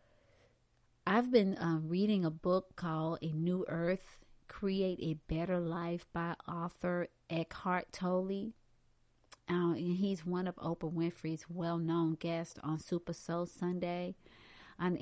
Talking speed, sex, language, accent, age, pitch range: 130 wpm, female, English, American, 40-59, 170-210 Hz